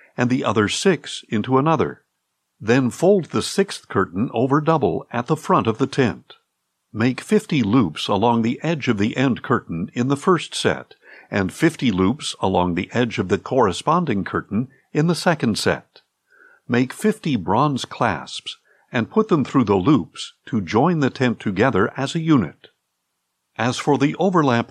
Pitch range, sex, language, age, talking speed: 110-160 Hz, male, English, 60-79, 170 wpm